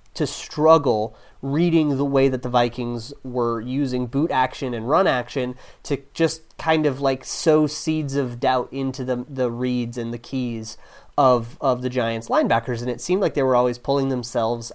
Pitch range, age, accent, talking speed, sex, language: 125-165 Hz, 30-49, American, 185 wpm, male, English